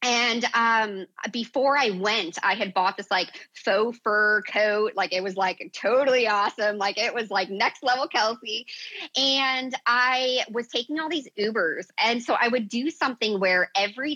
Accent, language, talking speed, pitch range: American, English, 175 wpm, 195-265 Hz